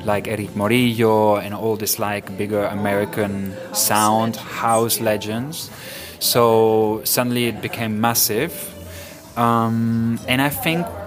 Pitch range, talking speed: 110-125 Hz, 115 wpm